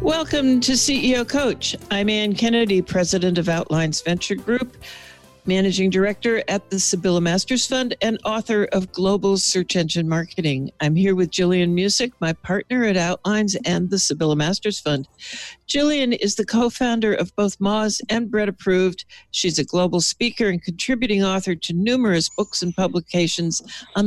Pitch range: 175-225 Hz